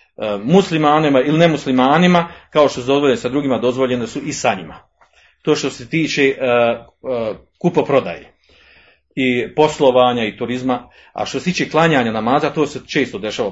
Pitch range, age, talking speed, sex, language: 115-150 Hz, 40-59, 145 wpm, male, Croatian